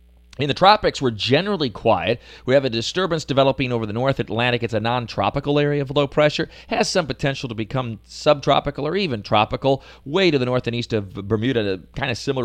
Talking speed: 210 wpm